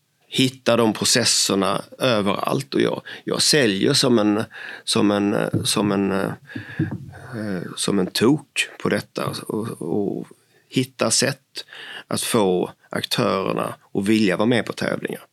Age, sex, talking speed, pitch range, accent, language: 30-49, male, 125 wpm, 100-120 Hz, native, Swedish